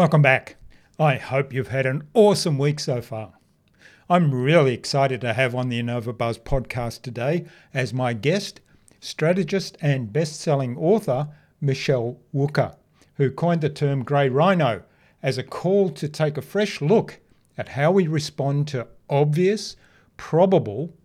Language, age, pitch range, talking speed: English, 50-69, 125-160 Hz, 150 wpm